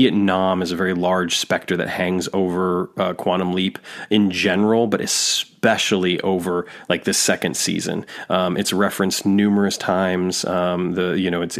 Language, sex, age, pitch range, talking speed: English, male, 20-39, 95-105 Hz, 160 wpm